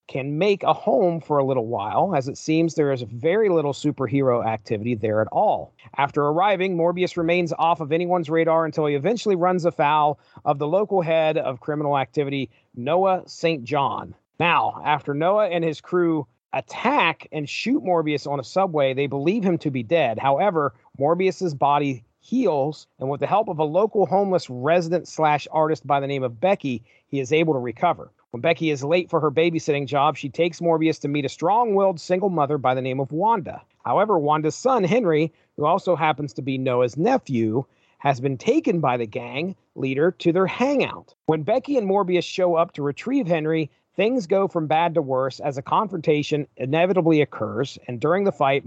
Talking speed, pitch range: 190 wpm, 140-175 Hz